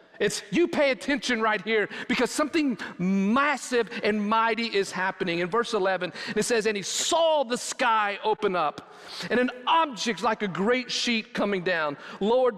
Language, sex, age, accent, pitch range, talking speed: English, male, 40-59, American, 175-255 Hz, 165 wpm